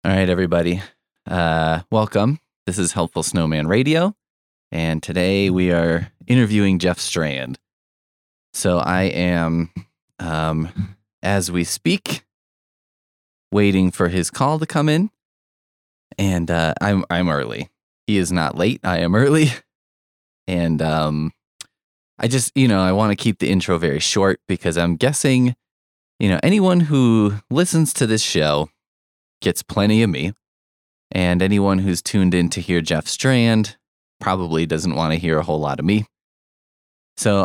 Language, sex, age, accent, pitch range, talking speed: English, male, 20-39, American, 85-110 Hz, 145 wpm